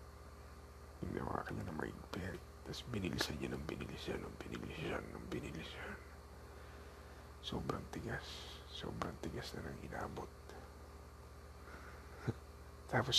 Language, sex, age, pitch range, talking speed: Filipino, male, 50-69, 80-95 Hz, 90 wpm